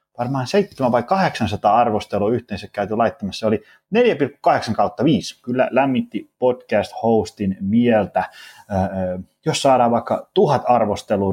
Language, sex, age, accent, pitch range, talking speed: Finnish, male, 30-49, native, 95-120 Hz, 115 wpm